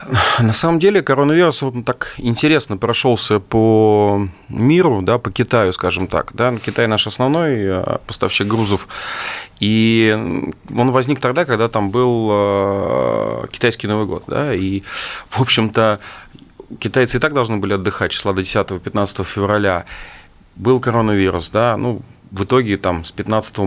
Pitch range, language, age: 100-125 Hz, Russian, 30-49